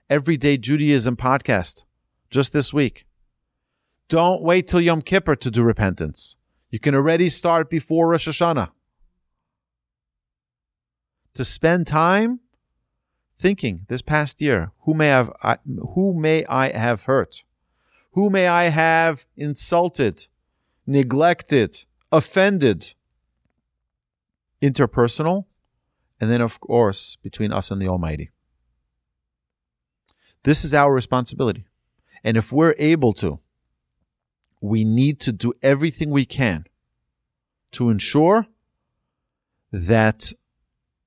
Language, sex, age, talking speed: English, male, 40-59, 105 wpm